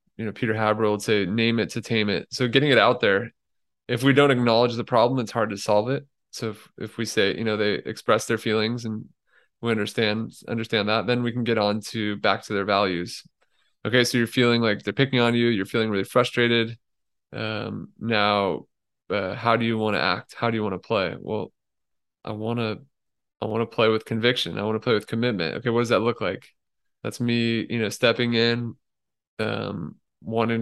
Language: English